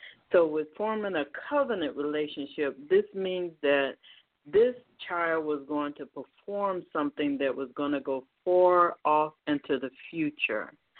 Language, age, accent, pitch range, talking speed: English, 50-69, American, 145-190 Hz, 140 wpm